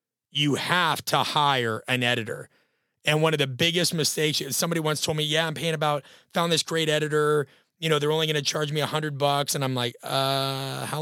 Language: English